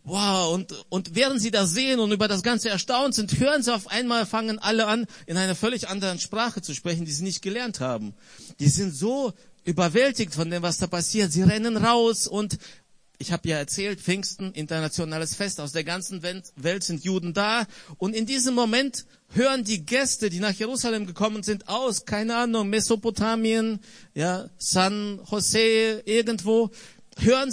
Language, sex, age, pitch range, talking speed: German, male, 50-69, 170-220 Hz, 175 wpm